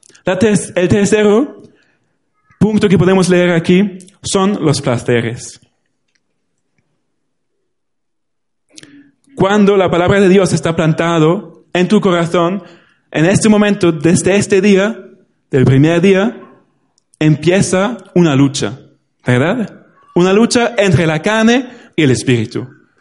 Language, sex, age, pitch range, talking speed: Spanish, male, 30-49, 140-190 Hz, 105 wpm